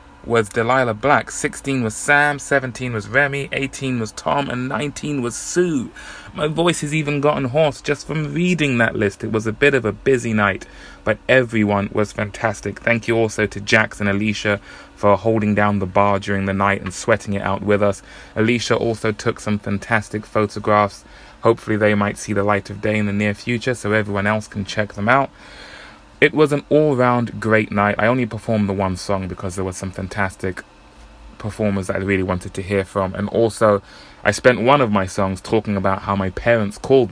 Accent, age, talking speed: British, 20-39, 200 wpm